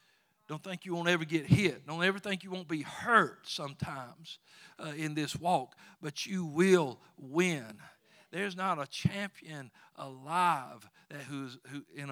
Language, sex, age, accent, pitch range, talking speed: English, male, 50-69, American, 140-175 Hz, 145 wpm